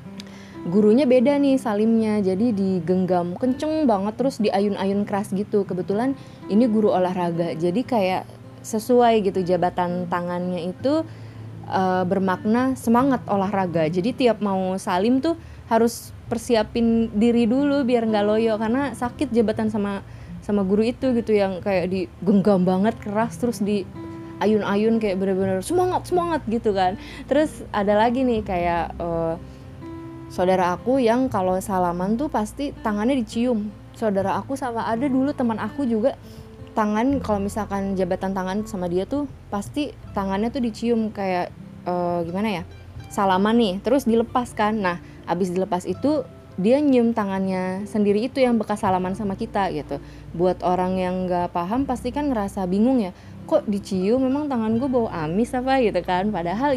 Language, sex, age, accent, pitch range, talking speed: Indonesian, female, 20-39, native, 185-235 Hz, 145 wpm